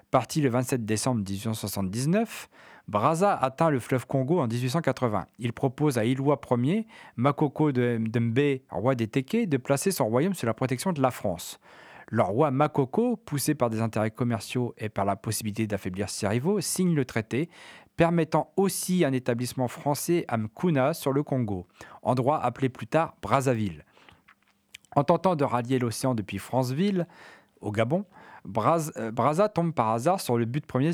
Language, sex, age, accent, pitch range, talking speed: French, male, 40-59, French, 115-150 Hz, 165 wpm